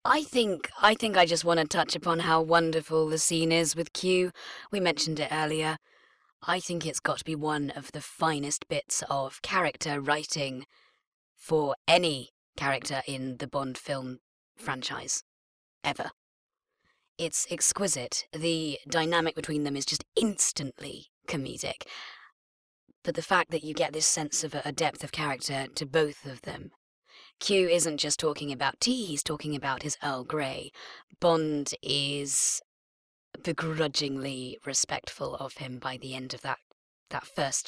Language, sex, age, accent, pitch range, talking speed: English, female, 30-49, British, 140-170 Hz, 155 wpm